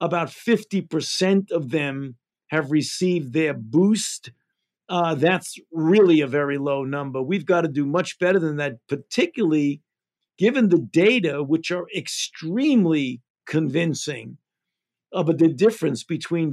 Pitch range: 150-180 Hz